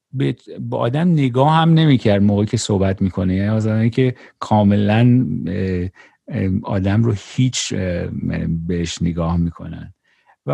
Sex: male